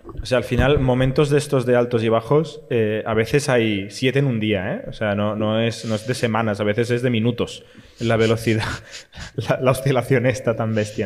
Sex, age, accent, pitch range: male, 20-39, Spanish, 110-130 Hz